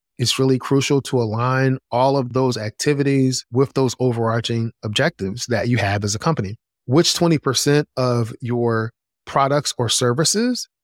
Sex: male